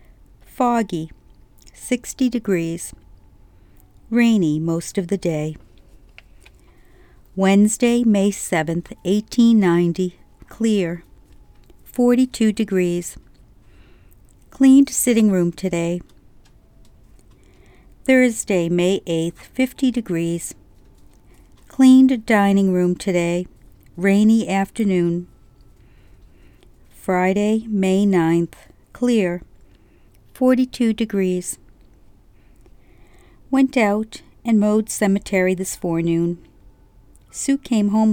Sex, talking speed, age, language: female, 70 wpm, 60-79, English